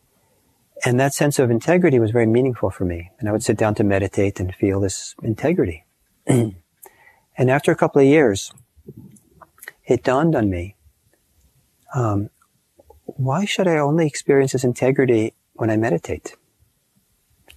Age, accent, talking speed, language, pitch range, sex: 40-59, American, 145 wpm, English, 100-135 Hz, male